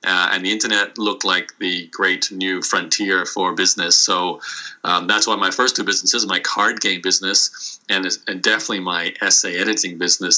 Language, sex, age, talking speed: English, male, 30-49, 180 wpm